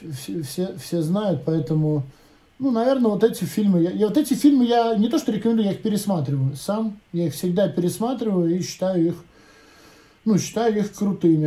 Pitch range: 160-210 Hz